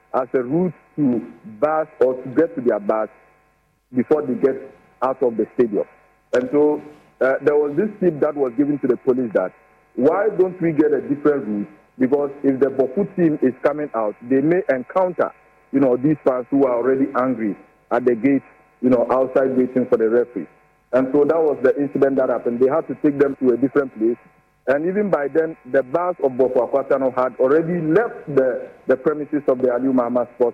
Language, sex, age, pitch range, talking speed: English, male, 50-69, 125-150 Hz, 205 wpm